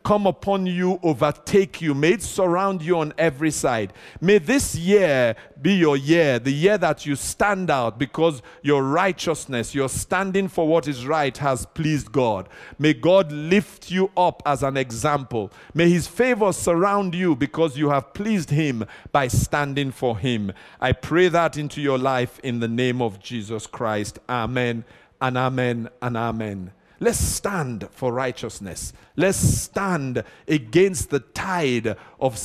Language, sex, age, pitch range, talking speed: English, male, 50-69, 115-160 Hz, 155 wpm